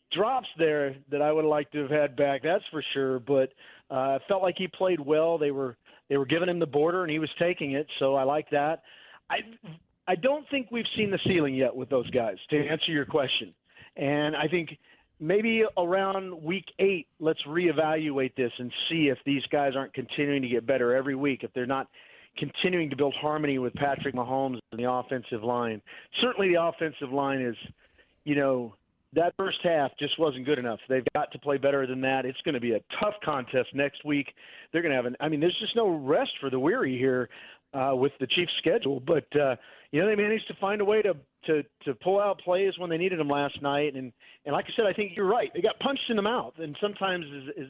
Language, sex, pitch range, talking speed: English, male, 135-175 Hz, 225 wpm